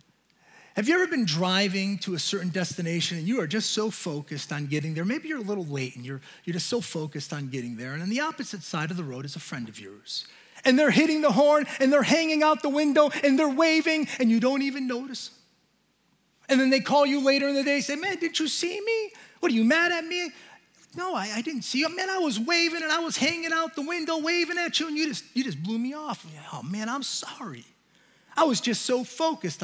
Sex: male